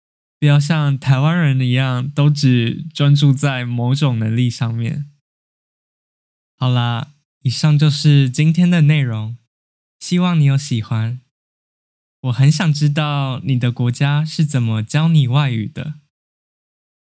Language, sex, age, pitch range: Chinese, male, 10-29, 120-150 Hz